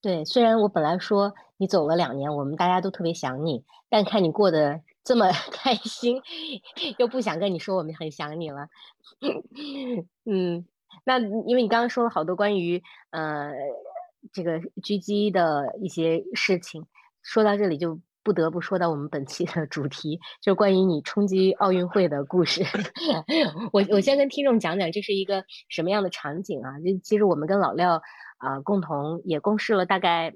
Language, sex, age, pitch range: Chinese, female, 30-49, 170-230 Hz